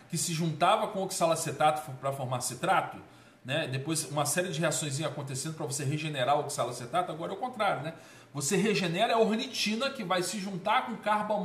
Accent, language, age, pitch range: Brazilian, Portuguese, 40-59, 125-185 Hz